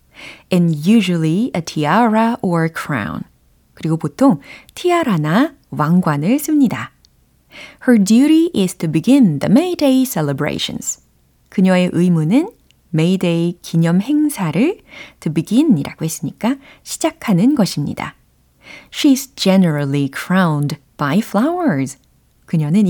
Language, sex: Korean, female